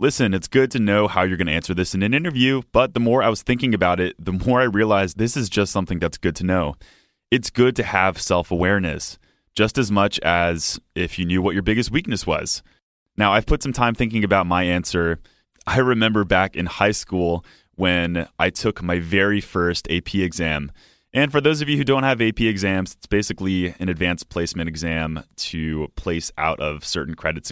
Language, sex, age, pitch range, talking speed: English, male, 30-49, 85-110 Hz, 210 wpm